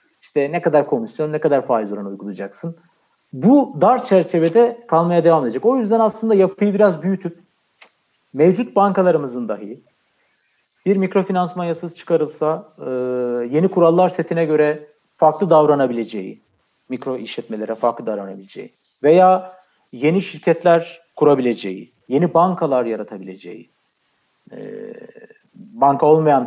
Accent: native